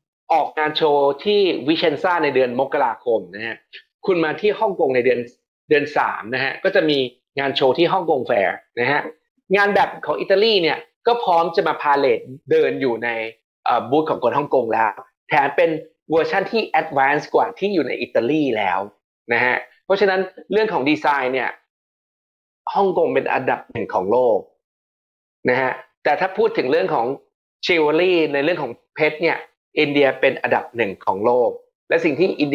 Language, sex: Thai, male